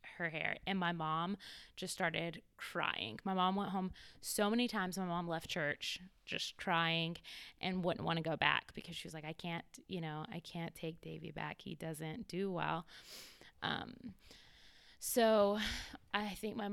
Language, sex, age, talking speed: English, female, 20-39, 175 wpm